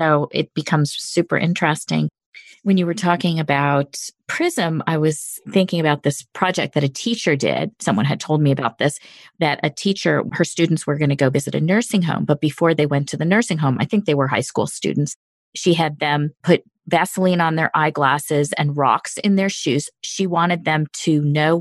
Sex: female